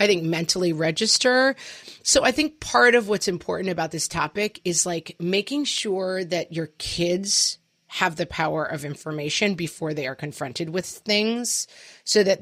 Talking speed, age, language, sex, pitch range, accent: 165 wpm, 30-49, English, female, 165-220 Hz, American